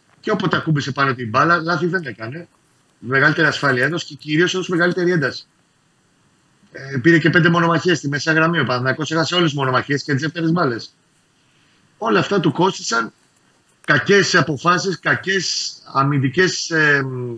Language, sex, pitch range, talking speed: Greek, male, 135-160 Hz, 145 wpm